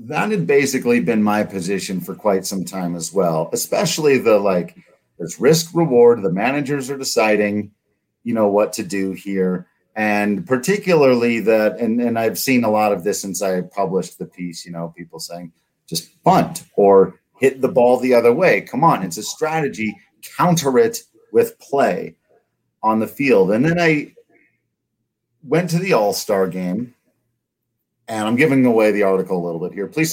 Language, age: English, 40-59